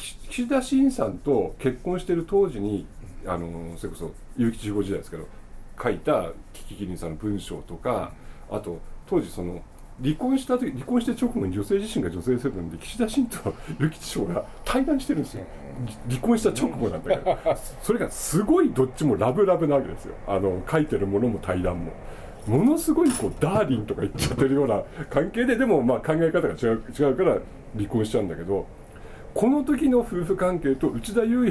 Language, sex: Japanese, male